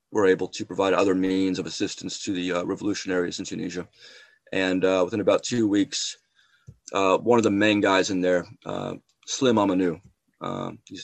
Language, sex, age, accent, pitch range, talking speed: English, male, 30-49, American, 90-100 Hz, 180 wpm